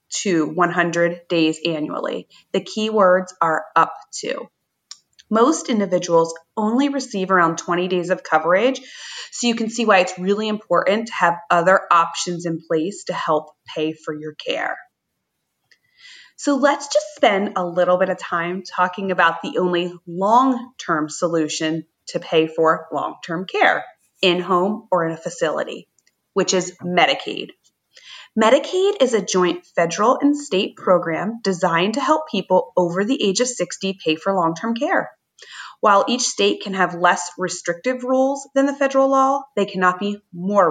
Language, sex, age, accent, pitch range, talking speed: English, female, 30-49, American, 175-235 Hz, 155 wpm